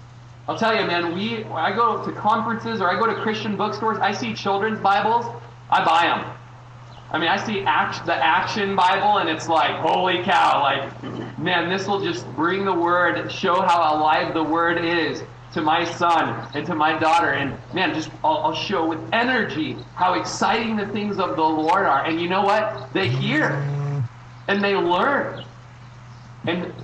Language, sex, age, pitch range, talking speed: English, male, 30-49, 125-195 Hz, 185 wpm